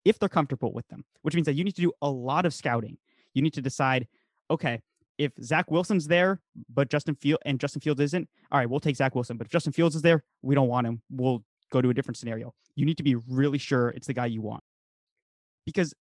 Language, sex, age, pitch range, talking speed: English, male, 20-39, 125-165 Hz, 245 wpm